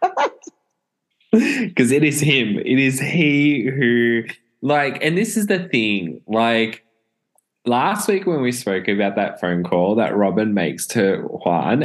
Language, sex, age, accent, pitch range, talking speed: English, male, 10-29, Australian, 90-130 Hz, 145 wpm